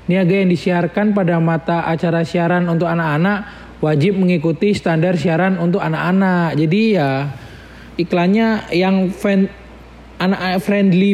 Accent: native